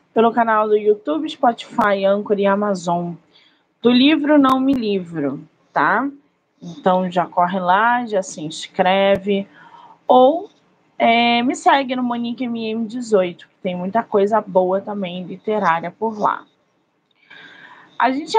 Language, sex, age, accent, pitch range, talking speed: Portuguese, female, 20-39, Brazilian, 180-230 Hz, 125 wpm